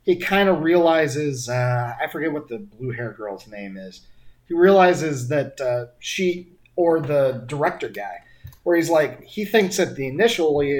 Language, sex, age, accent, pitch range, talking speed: English, male, 30-49, American, 120-175 Hz, 180 wpm